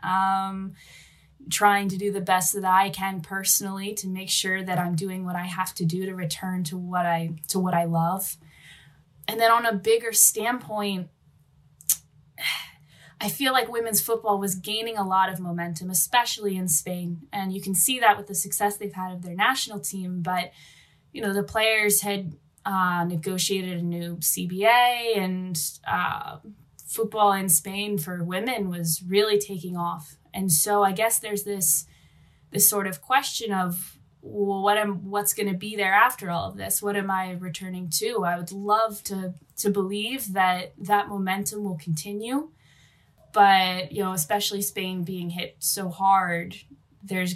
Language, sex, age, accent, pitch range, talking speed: English, female, 10-29, American, 175-205 Hz, 170 wpm